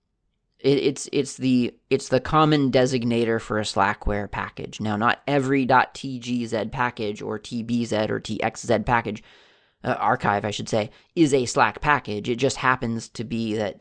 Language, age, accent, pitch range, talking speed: English, 30-49, American, 105-125 Hz, 150 wpm